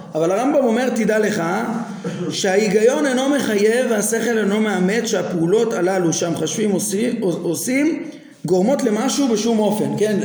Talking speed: 115 wpm